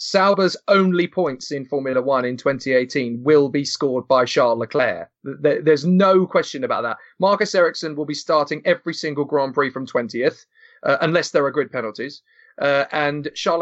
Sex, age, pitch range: male, 30-49, 145-200 Hz